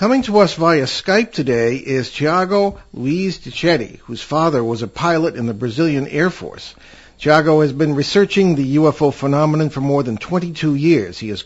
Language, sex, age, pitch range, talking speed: English, male, 50-69, 130-165 Hz, 185 wpm